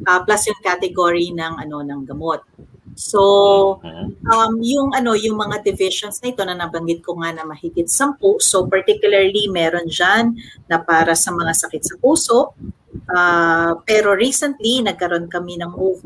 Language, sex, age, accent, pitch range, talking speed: Filipino, female, 40-59, native, 170-210 Hz, 155 wpm